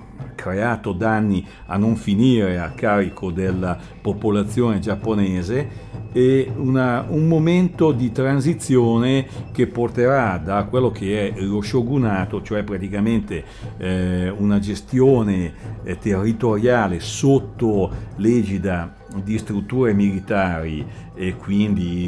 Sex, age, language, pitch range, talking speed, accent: male, 60-79, Italian, 100-125 Hz, 100 wpm, native